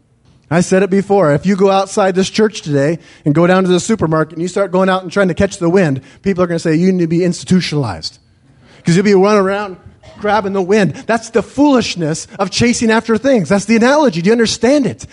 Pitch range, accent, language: 135-200 Hz, American, English